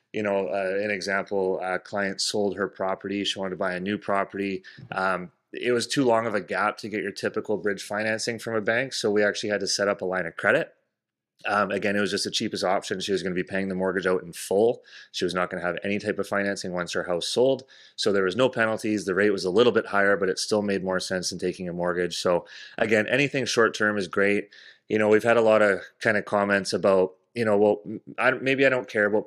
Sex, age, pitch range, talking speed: male, 30-49, 95-110 Hz, 260 wpm